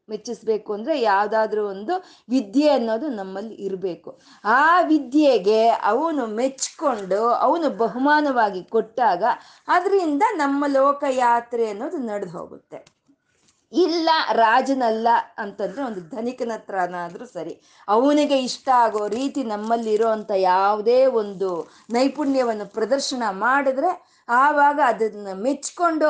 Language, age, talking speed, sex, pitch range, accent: Kannada, 20-39, 95 wpm, female, 215-285 Hz, native